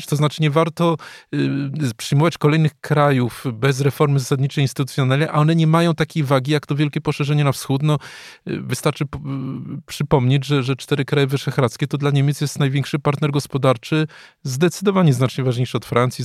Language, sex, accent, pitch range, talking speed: Polish, male, native, 130-150 Hz, 170 wpm